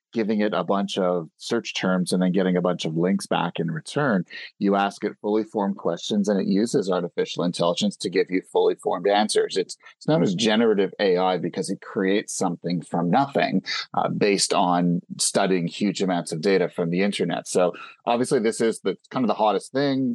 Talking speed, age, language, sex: 200 wpm, 30-49, English, male